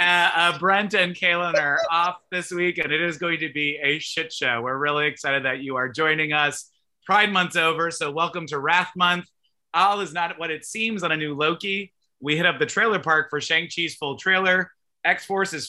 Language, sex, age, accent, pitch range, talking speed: English, male, 30-49, American, 155-205 Hz, 210 wpm